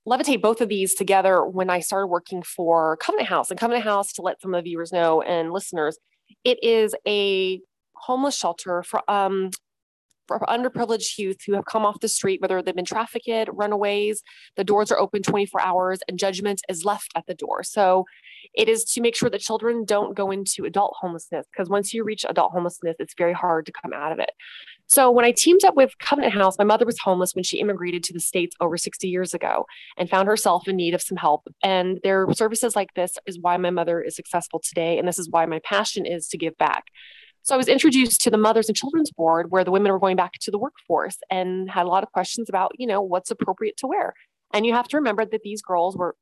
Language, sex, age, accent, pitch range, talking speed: English, female, 20-39, American, 180-220 Hz, 230 wpm